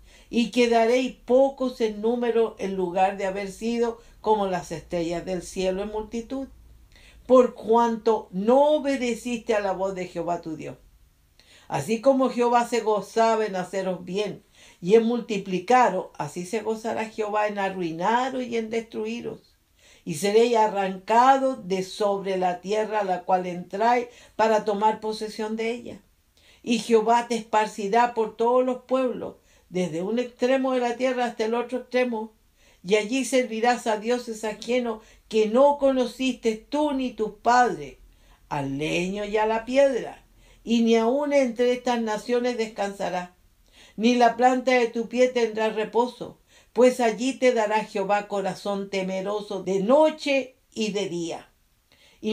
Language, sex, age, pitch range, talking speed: English, female, 50-69, 200-245 Hz, 150 wpm